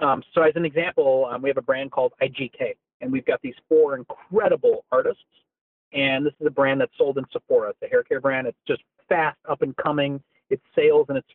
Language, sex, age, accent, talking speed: English, male, 40-59, American, 220 wpm